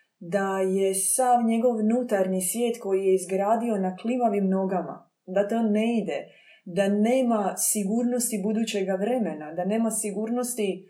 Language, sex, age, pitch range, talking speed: Croatian, female, 20-39, 190-235 Hz, 130 wpm